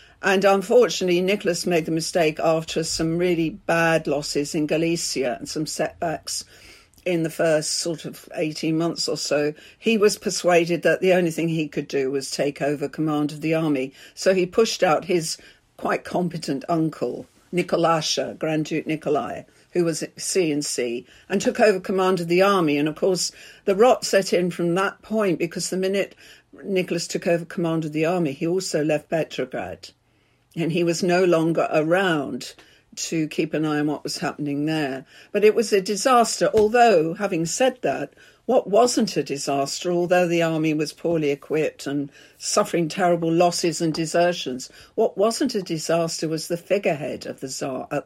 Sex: female